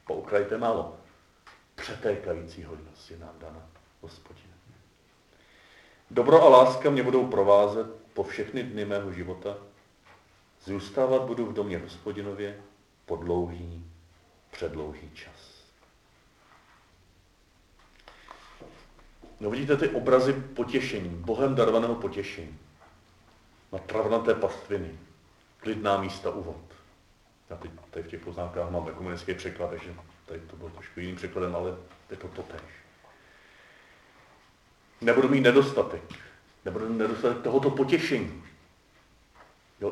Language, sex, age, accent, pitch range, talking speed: Czech, male, 40-59, native, 85-115 Hz, 105 wpm